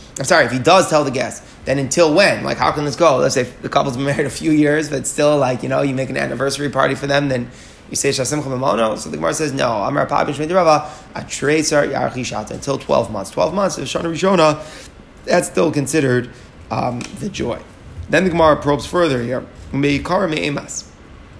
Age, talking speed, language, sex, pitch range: 20-39, 175 wpm, English, male, 130-155 Hz